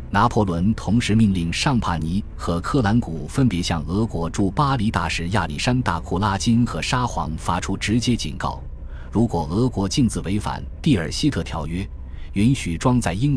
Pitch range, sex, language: 80-110 Hz, male, Chinese